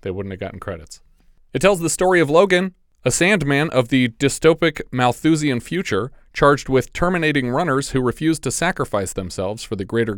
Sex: male